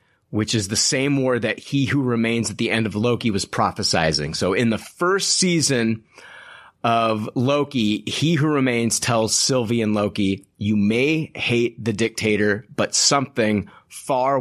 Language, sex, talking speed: English, male, 160 wpm